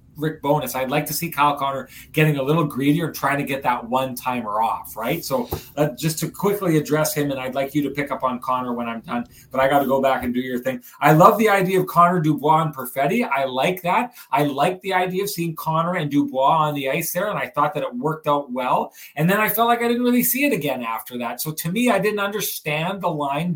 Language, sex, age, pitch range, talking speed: English, male, 30-49, 140-175 Hz, 260 wpm